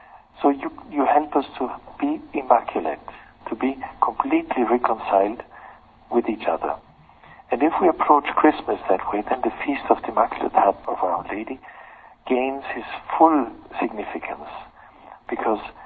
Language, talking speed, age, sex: English, 140 wpm, 60-79, male